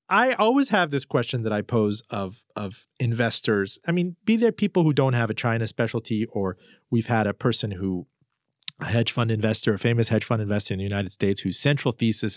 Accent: American